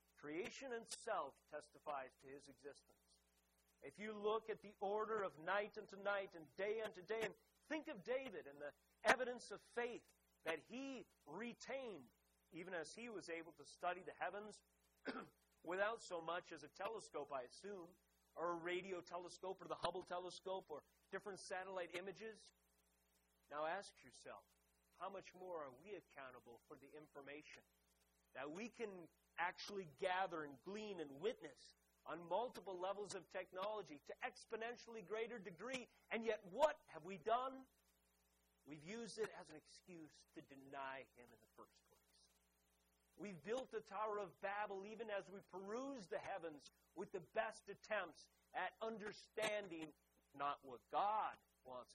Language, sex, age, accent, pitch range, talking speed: English, male, 40-59, American, 135-215 Hz, 155 wpm